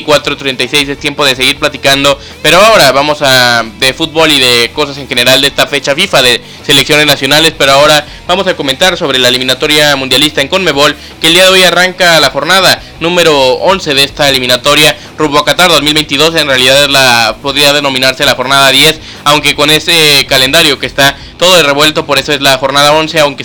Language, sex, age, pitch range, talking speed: Spanish, male, 20-39, 140-155 Hz, 195 wpm